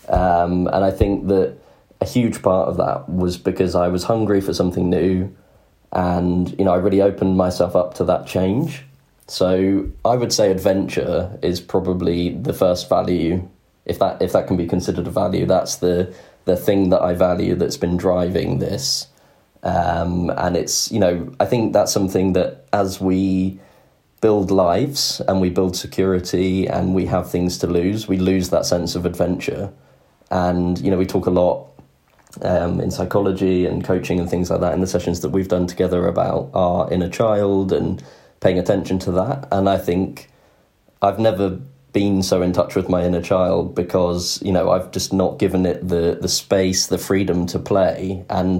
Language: English